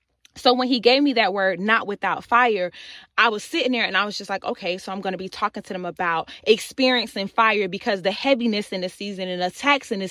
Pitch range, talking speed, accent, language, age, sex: 200-260 Hz, 250 wpm, American, English, 20-39, female